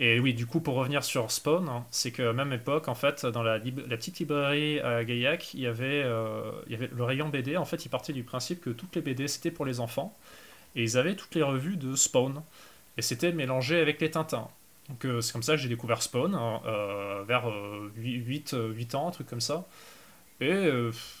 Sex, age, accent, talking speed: male, 20-39, French, 240 wpm